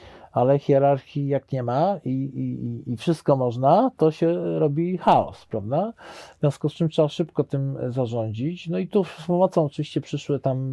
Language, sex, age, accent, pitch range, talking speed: Polish, male, 40-59, native, 115-155 Hz, 175 wpm